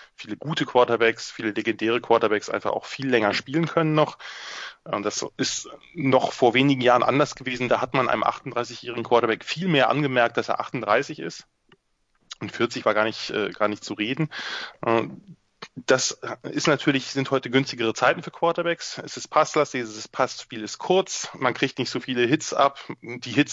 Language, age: German, 20-39